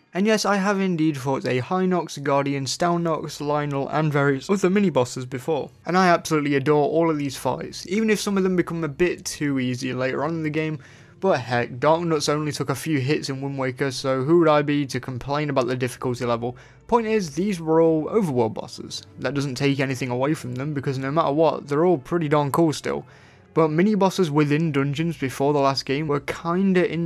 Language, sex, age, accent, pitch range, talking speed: English, male, 20-39, British, 135-165 Hz, 215 wpm